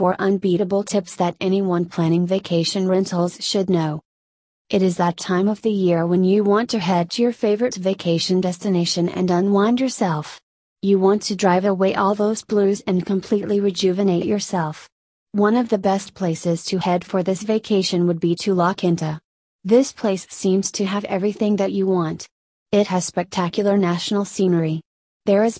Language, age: English, 30-49